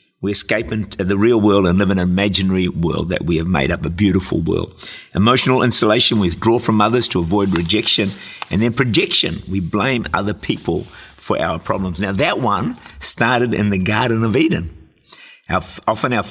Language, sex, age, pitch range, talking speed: English, male, 50-69, 95-115 Hz, 185 wpm